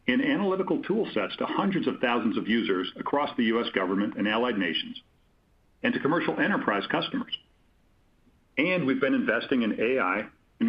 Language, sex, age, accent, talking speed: English, male, 50-69, American, 155 wpm